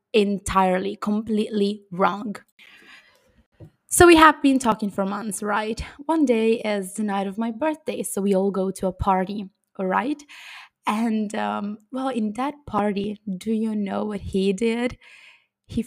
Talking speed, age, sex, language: 155 wpm, 20-39, female, English